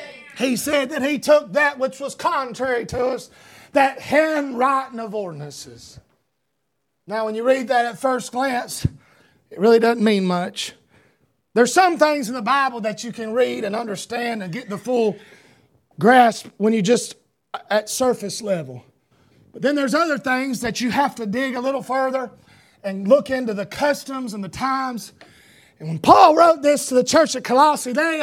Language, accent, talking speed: English, American, 175 wpm